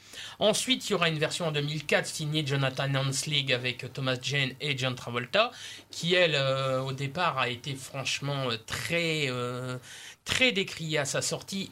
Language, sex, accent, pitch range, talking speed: French, male, French, 130-165 Hz, 170 wpm